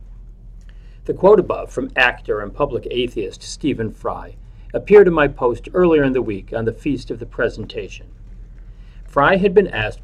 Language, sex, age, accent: English, male, 40-59, American